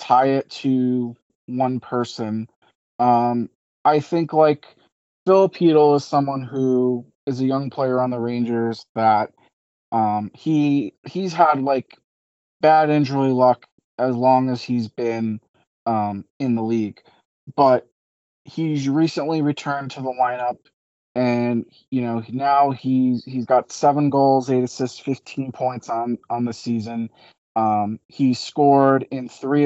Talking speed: 135 wpm